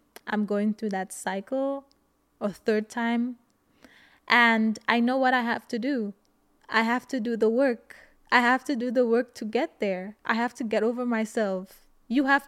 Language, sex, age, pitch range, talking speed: English, female, 20-39, 200-240 Hz, 190 wpm